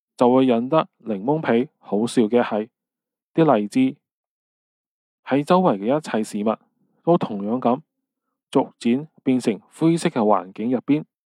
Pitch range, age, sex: 125-185 Hz, 20-39, male